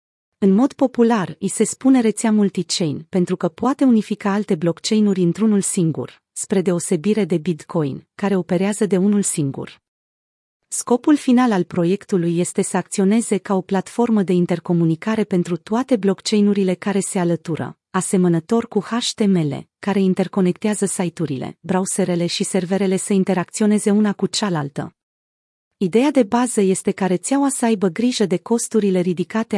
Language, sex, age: Romanian, female, 30-49